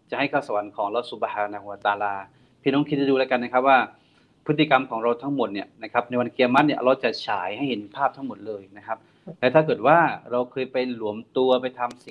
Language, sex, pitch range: Thai, male, 115-140 Hz